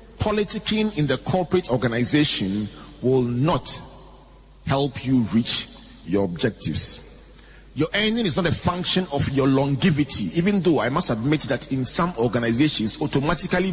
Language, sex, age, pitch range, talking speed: English, male, 40-59, 130-180 Hz, 135 wpm